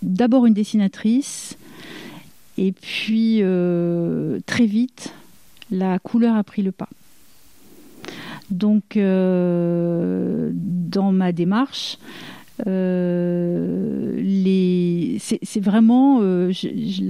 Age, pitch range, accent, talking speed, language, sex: 50-69, 180-220 Hz, French, 80 wpm, French, female